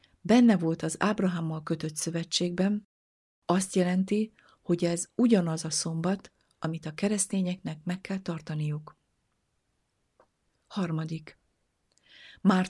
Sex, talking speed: female, 100 wpm